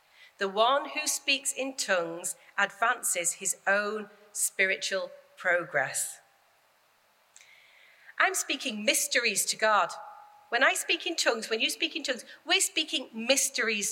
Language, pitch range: English, 195-280 Hz